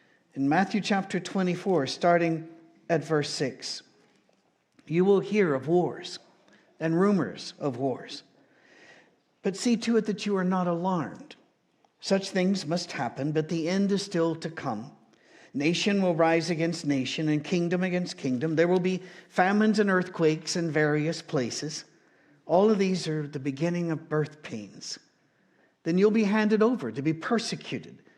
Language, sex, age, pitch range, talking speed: English, male, 60-79, 155-195 Hz, 155 wpm